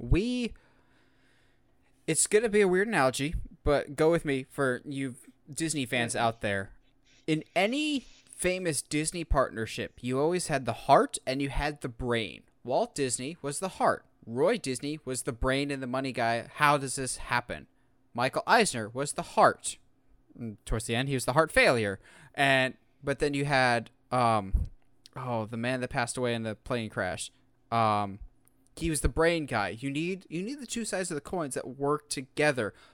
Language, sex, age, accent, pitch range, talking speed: English, male, 20-39, American, 125-160 Hz, 180 wpm